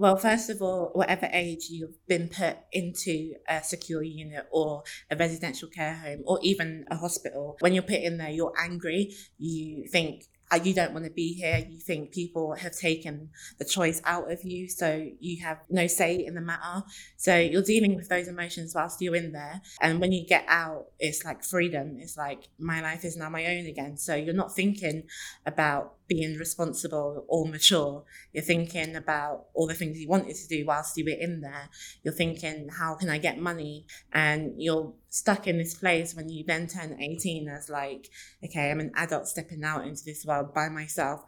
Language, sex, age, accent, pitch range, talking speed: English, female, 20-39, British, 155-175 Hz, 200 wpm